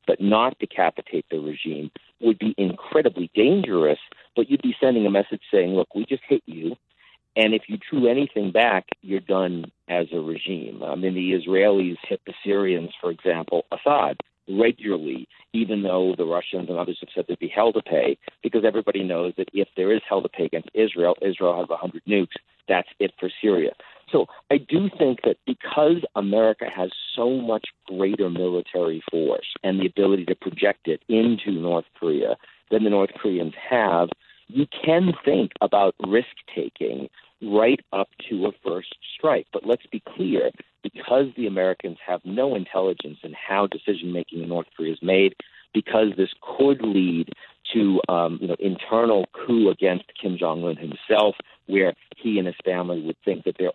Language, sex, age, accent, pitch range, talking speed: English, male, 50-69, American, 90-110 Hz, 175 wpm